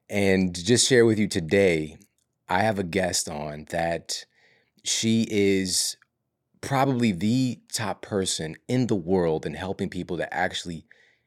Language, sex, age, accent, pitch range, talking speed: English, male, 30-49, American, 85-115 Hz, 140 wpm